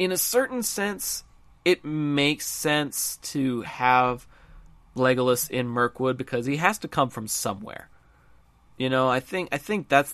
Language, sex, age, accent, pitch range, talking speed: English, male, 30-49, American, 120-155 Hz, 155 wpm